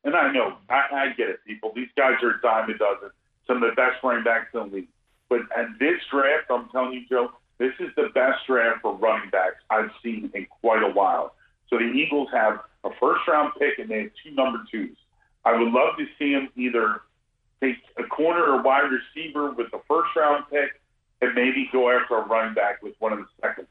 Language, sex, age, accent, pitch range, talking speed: English, male, 50-69, American, 115-130 Hz, 225 wpm